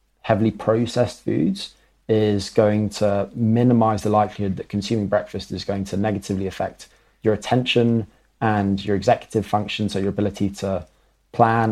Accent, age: British, 20-39